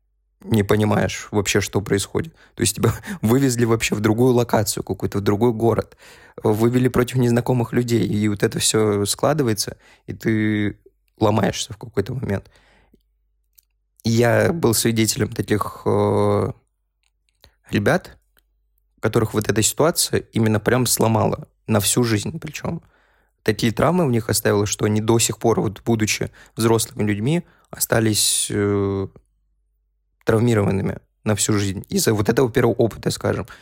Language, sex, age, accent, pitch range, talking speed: Russian, male, 20-39, native, 100-115 Hz, 135 wpm